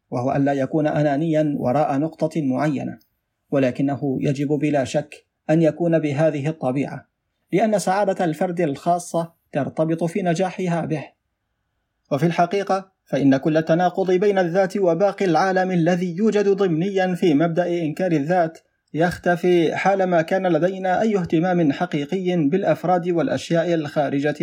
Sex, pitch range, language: male, 150-180 Hz, Arabic